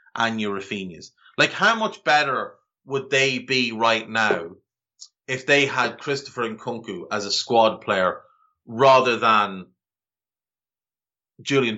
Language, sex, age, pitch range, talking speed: English, male, 30-49, 110-140 Hz, 125 wpm